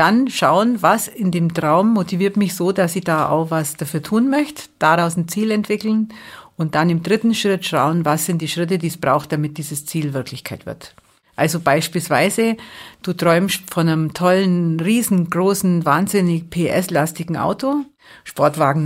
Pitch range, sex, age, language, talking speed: 155-195 Hz, female, 50-69, German, 160 wpm